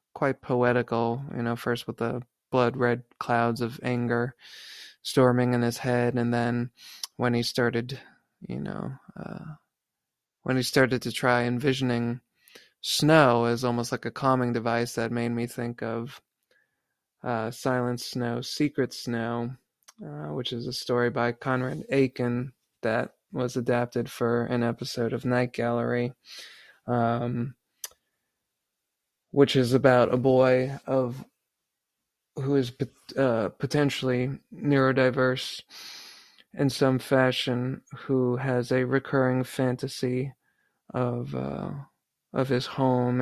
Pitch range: 120-130 Hz